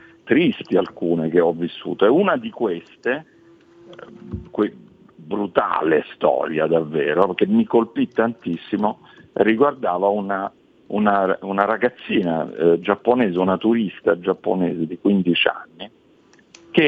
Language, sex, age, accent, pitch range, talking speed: Italian, male, 50-69, native, 100-145 Hz, 110 wpm